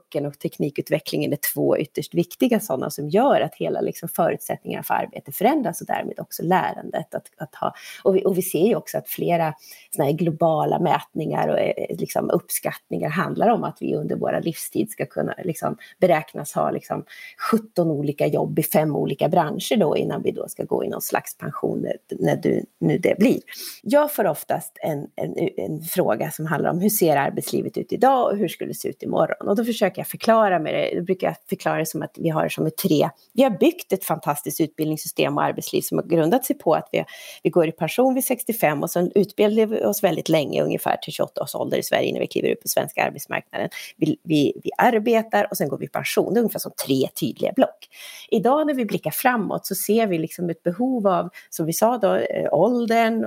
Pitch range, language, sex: 165-230 Hz, Swedish, female